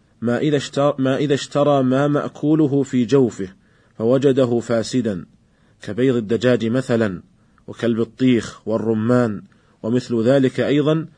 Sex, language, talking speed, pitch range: male, Arabic, 95 wpm, 115-135 Hz